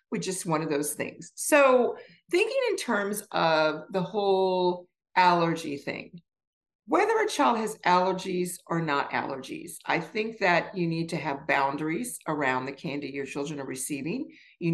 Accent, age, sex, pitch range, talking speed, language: American, 50-69, female, 155-225 Hz, 160 wpm, English